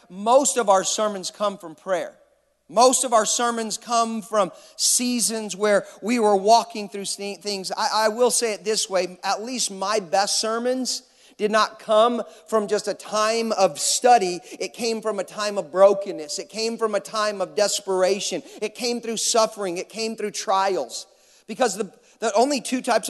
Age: 40-59